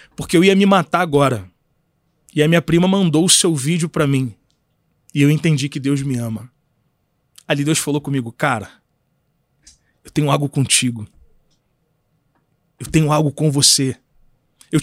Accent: Brazilian